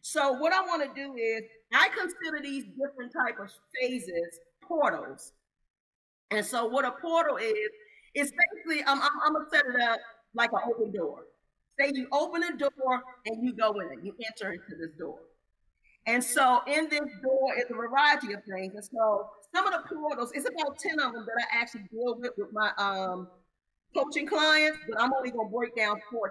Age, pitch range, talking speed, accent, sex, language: 40-59, 210-295 Hz, 200 wpm, American, female, English